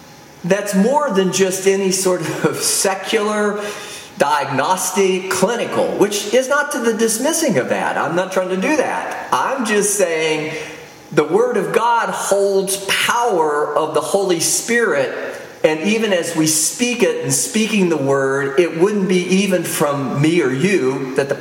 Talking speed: 160 wpm